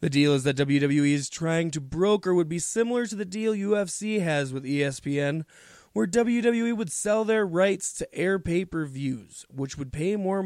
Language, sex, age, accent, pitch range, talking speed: English, male, 20-39, American, 140-180 Hz, 185 wpm